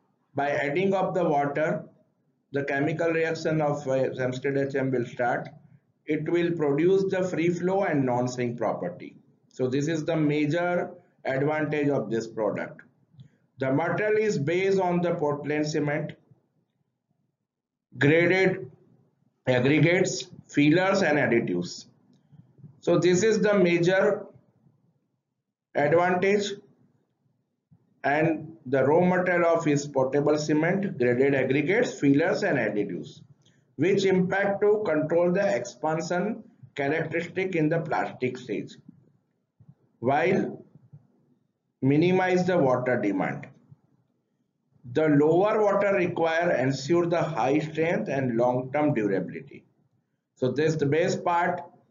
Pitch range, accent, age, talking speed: 140-175 Hz, Indian, 50-69, 115 wpm